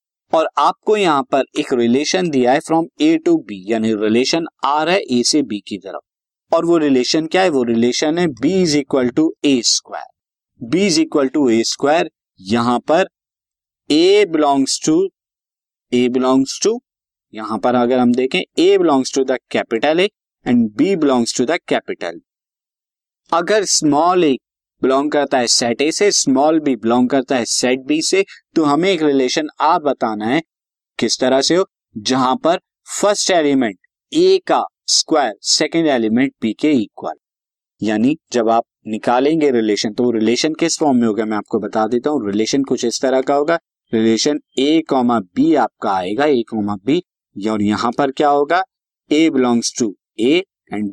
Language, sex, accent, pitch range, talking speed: Hindi, male, native, 120-170 Hz, 175 wpm